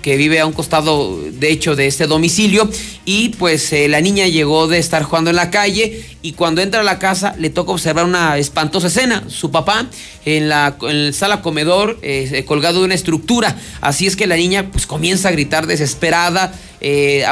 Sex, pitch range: male, 155-200 Hz